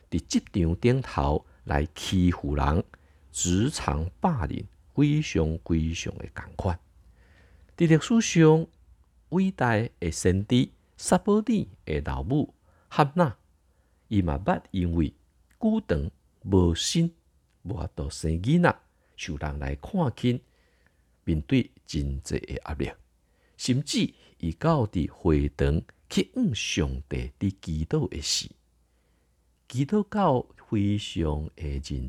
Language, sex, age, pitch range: Chinese, male, 50-69, 75-120 Hz